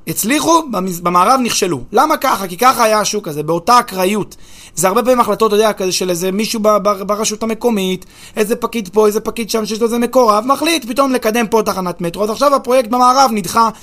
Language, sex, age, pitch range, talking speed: Hebrew, male, 30-49, 190-255 Hz, 190 wpm